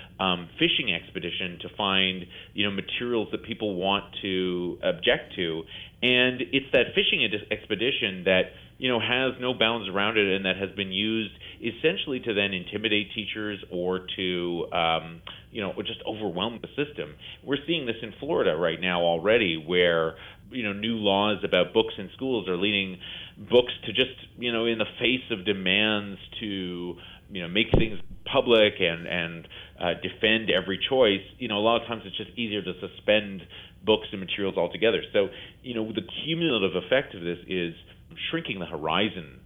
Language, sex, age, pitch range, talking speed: English, male, 30-49, 90-115 Hz, 175 wpm